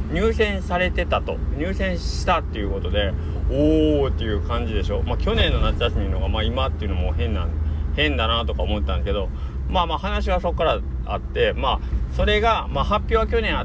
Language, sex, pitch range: Japanese, male, 70-95 Hz